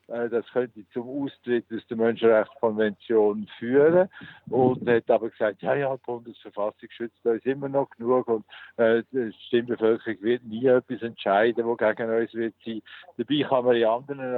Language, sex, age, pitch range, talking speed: German, male, 60-79, 110-130 Hz, 170 wpm